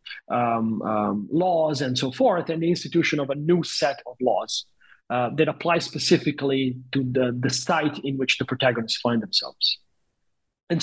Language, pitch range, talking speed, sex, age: English, 130-170 Hz, 165 wpm, male, 40-59